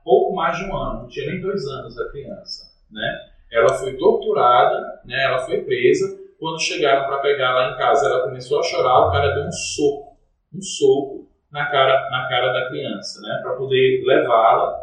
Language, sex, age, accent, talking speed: Portuguese, male, 20-39, Brazilian, 195 wpm